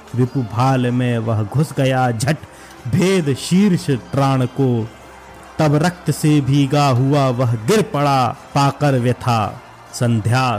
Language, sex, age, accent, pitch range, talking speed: Hindi, male, 30-49, native, 125-155 Hz, 120 wpm